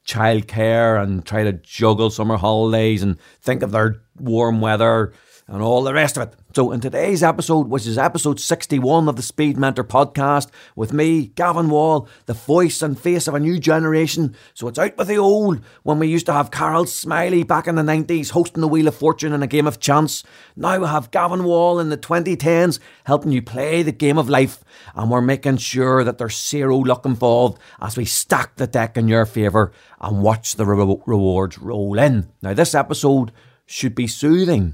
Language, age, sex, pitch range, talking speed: English, 30-49, male, 105-145 Hz, 200 wpm